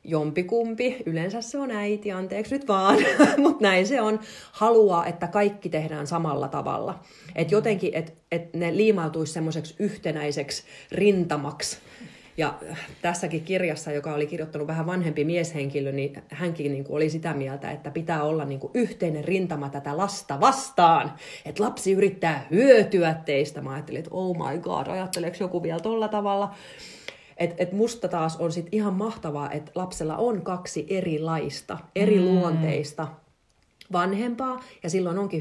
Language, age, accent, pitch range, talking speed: Finnish, 30-49, native, 160-205 Hz, 145 wpm